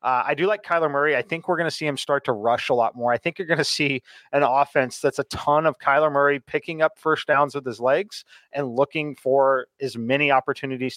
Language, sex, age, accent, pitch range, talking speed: English, male, 30-49, American, 130-165 Hz, 250 wpm